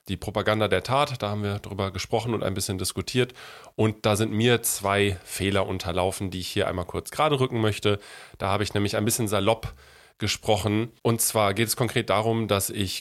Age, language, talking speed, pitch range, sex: 30-49, German, 205 wpm, 95-110 Hz, male